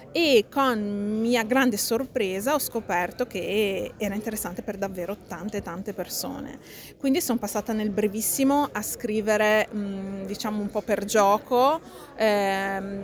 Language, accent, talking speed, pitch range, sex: Italian, native, 130 wpm, 195-240 Hz, female